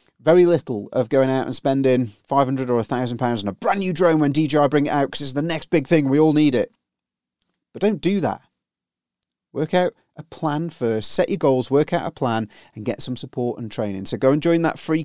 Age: 30-49